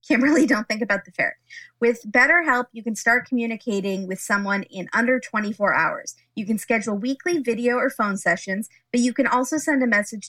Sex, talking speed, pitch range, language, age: female, 200 wpm, 200-255 Hz, English, 20-39